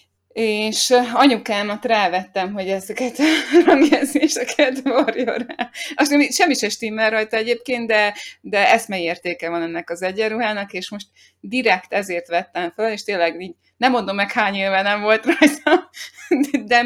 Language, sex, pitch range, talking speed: Hungarian, female, 170-220 Hz, 135 wpm